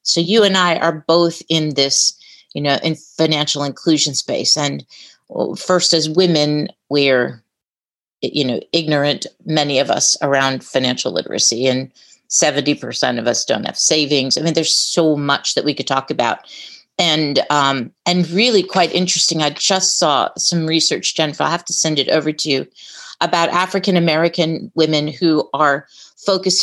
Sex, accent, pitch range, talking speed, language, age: female, American, 145-180 Hz, 160 wpm, English, 40-59